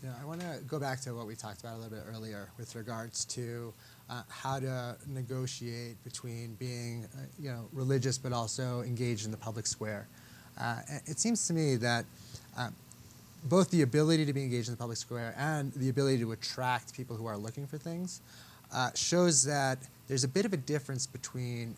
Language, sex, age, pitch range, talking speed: English, male, 30-49, 115-135 Hz, 205 wpm